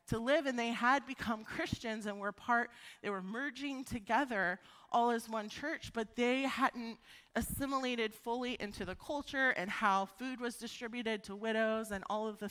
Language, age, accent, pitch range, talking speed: English, 30-49, American, 200-250 Hz, 175 wpm